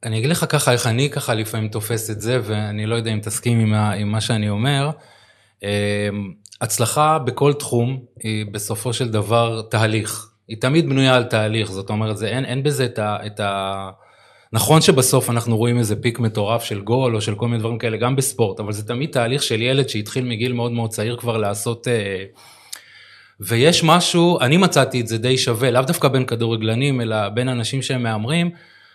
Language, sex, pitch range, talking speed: Hebrew, male, 110-135 Hz, 185 wpm